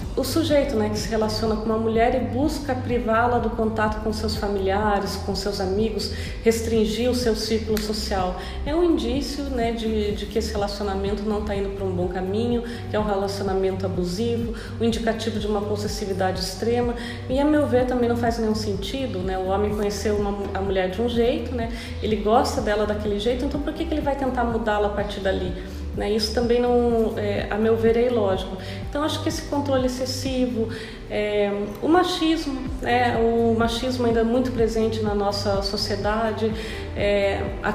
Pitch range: 200-235 Hz